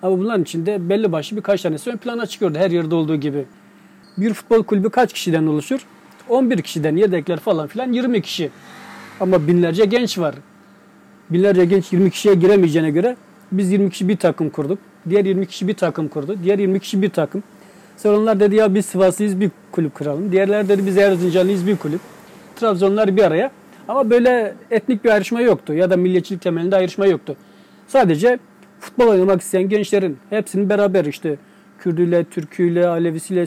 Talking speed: 170 wpm